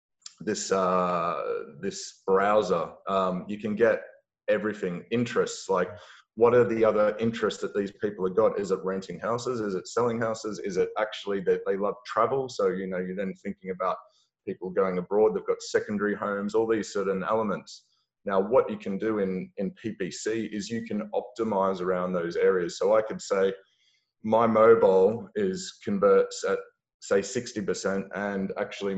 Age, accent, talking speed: 30-49, Australian, 170 wpm